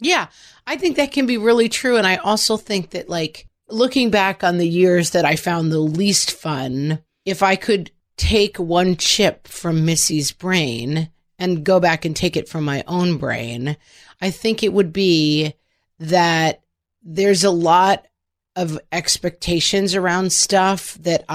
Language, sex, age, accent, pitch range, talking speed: English, female, 40-59, American, 160-195 Hz, 165 wpm